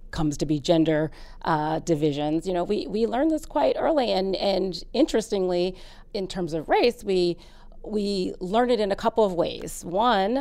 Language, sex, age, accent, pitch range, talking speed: English, female, 40-59, American, 170-225 Hz, 180 wpm